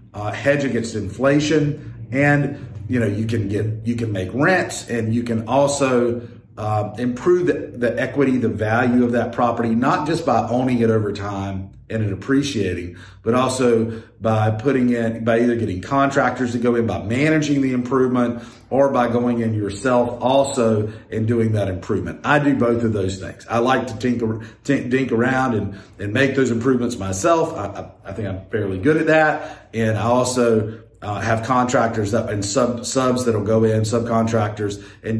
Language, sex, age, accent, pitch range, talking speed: English, male, 40-59, American, 110-130 Hz, 180 wpm